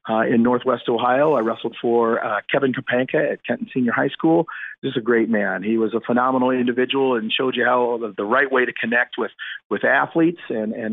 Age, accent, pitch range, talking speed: 40-59, American, 110-130 Hz, 220 wpm